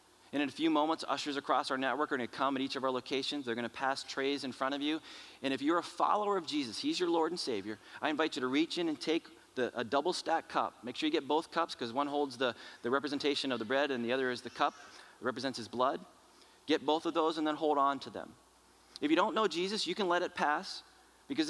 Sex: male